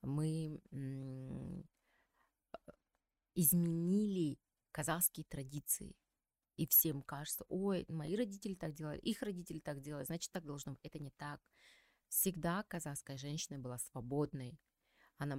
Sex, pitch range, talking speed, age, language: female, 145-185 Hz, 115 wpm, 20-39, Russian